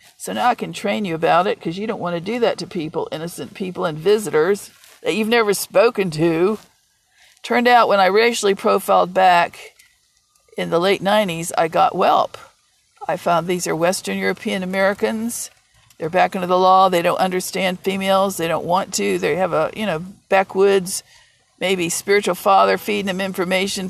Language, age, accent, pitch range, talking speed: English, 50-69, American, 175-215 Hz, 180 wpm